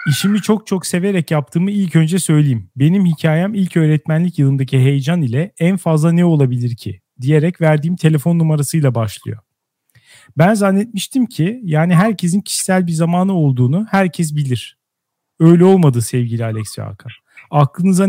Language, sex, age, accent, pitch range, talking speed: Turkish, male, 40-59, native, 135-180 Hz, 140 wpm